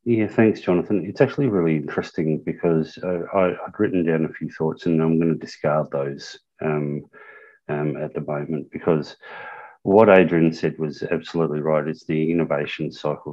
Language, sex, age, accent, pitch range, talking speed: English, male, 30-49, Australian, 75-85 Hz, 165 wpm